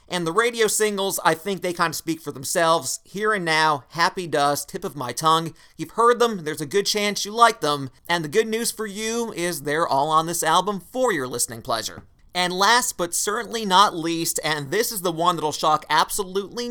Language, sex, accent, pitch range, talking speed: English, male, American, 155-210 Hz, 220 wpm